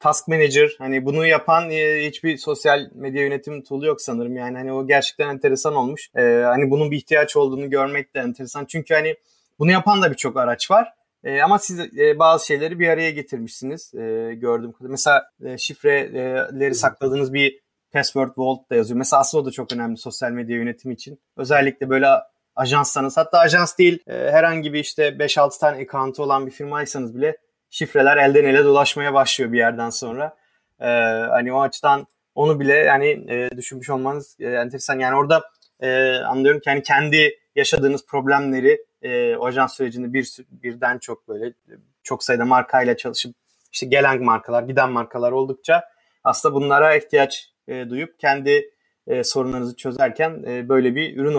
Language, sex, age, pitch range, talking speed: Turkish, male, 30-49, 130-160 Hz, 165 wpm